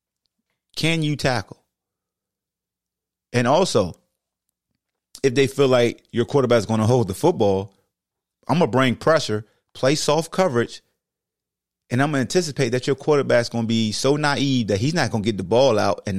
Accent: American